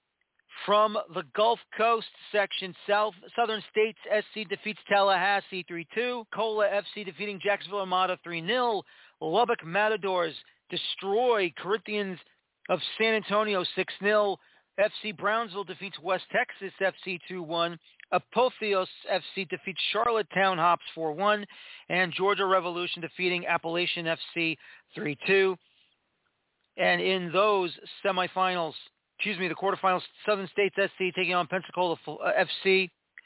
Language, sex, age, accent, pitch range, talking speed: English, male, 40-59, American, 170-200 Hz, 110 wpm